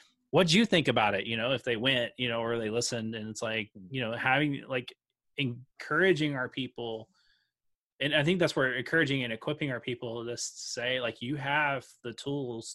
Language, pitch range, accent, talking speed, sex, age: English, 120-140 Hz, American, 200 wpm, male, 20-39